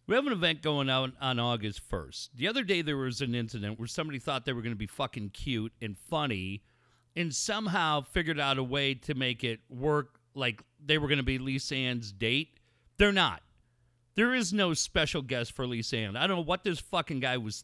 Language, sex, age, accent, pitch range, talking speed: English, male, 40-59, American, 120-180 Hz, 220 wpm